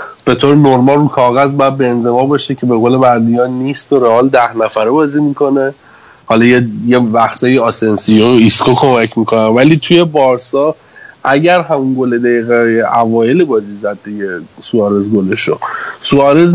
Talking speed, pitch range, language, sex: 150 wpm, 110-135 Hz, Persian, male